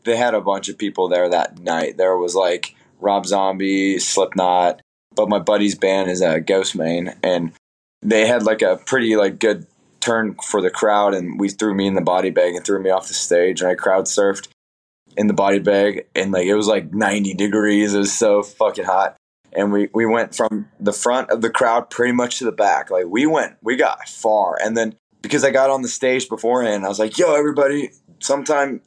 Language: English